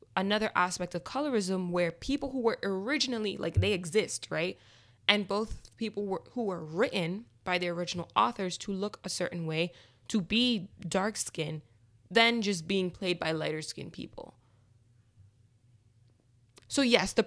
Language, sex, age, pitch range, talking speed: English, female, 20-39, 145-200 Hz, 150 wpm